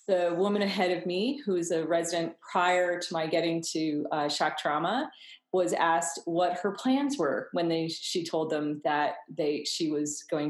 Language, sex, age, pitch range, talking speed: English, female, 30-49, 165-210 Hz, 190 wpm